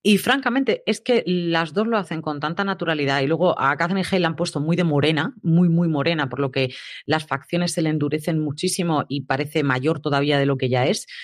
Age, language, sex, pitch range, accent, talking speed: 30-49, Spanish, female, 140-180 Hz, Spanish, 230 wpm